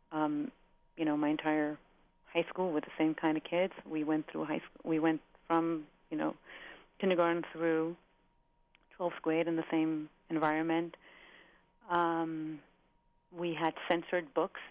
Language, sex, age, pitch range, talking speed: English, female, 40-59, 155-175 Hz, 145 wpm